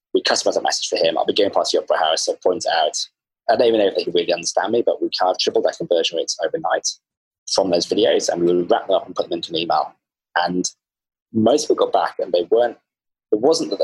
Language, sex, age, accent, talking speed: English, male, 20-39, British, 260 wpm